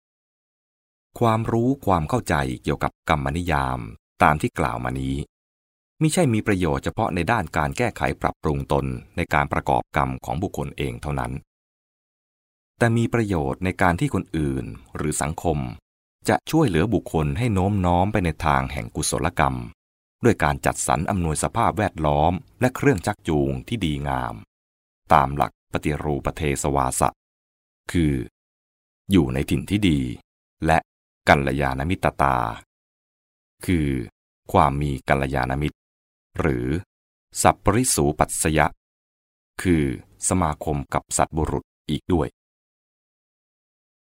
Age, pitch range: 20-39, 70-90 Hz